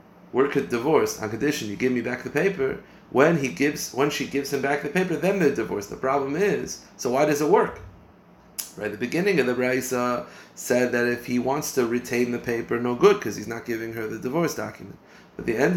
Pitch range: 115-145 Hz